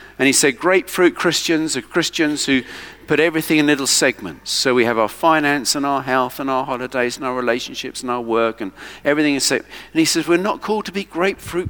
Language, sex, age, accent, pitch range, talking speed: English, male, 50-69, British, 120-200 Hz, 210 wpm